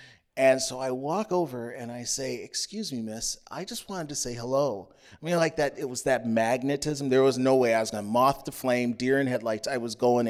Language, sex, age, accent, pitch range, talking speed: English, male, 30-49, American, 130-190 Hz, 245 wpm